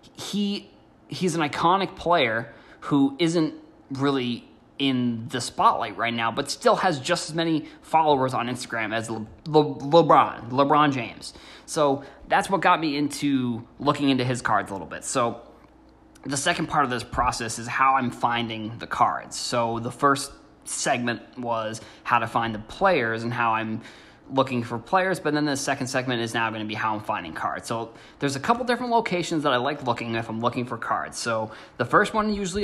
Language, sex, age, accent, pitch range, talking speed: English, male, 20-39, American, 115-150 Hz, 190 wpm